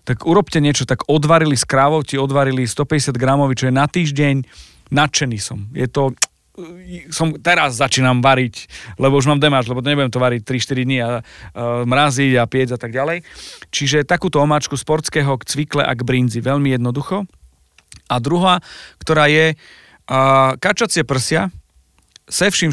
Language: Slovak